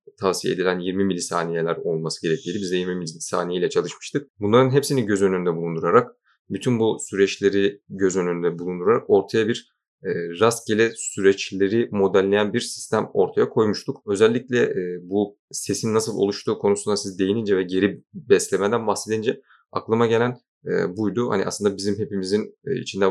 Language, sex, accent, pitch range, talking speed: Turkish, male, native, 95-110 Hz, 135 wpm